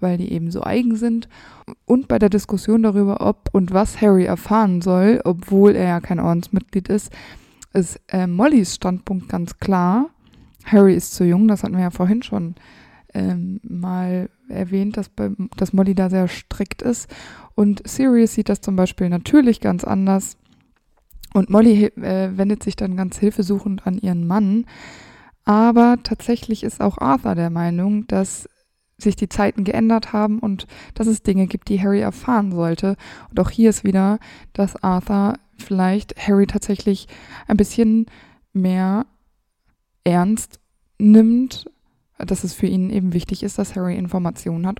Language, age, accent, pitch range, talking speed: German, 20-39, German, 185-215 Hz, 155 wpm